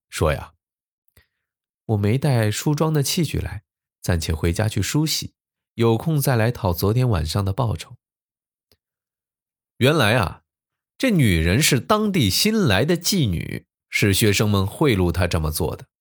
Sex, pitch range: male, 90-135 Hz